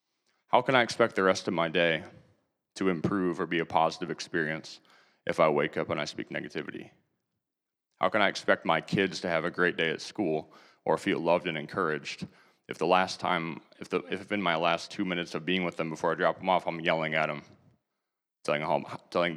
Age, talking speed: 30-49, 215 wpm